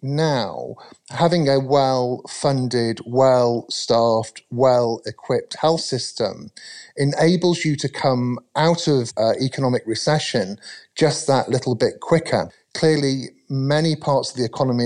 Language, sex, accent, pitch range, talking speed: English, male, British, 120-145 Hz, 125 wpm